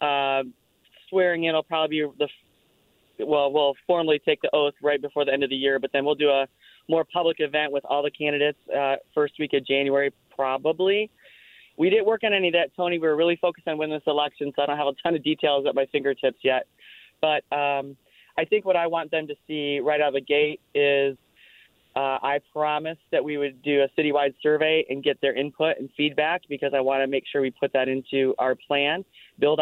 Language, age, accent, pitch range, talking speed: English, 30-49, American, 135-155 Hz, 225 wpm